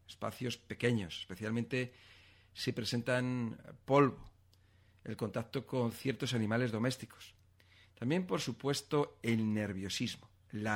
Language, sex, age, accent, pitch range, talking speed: Spanish, male, 50-69, Spanish, 95-135 Hz, 100 wpm